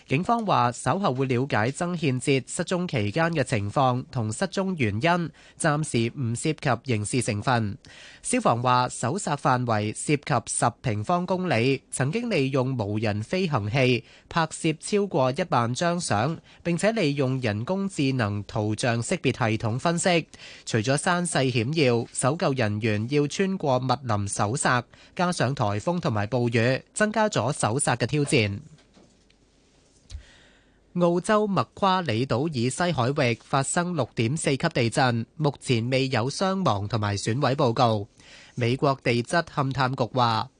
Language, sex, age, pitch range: Chinese, male, 20-39, 120-170 Hz